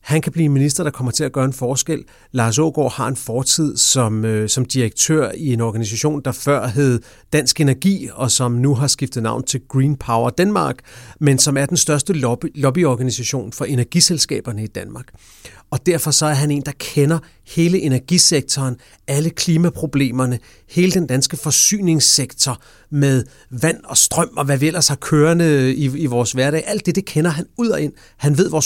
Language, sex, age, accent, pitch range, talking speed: English, male, 40-59, Danish, 125-155 Hz, 190 wpm